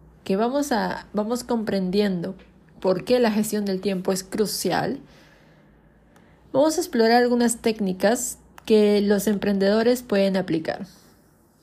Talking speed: 115 wpm